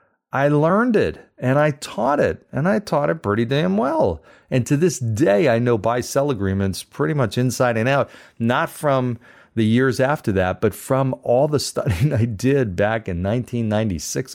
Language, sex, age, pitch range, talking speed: English, male, 40-59, 95-130 Hz, 180 wpm